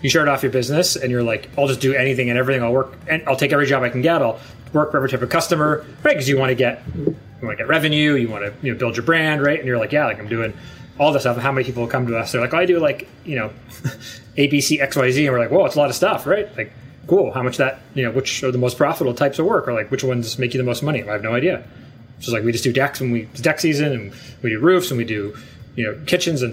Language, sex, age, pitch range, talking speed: English, male, 30-49, 120-150 Hz, 305 wpm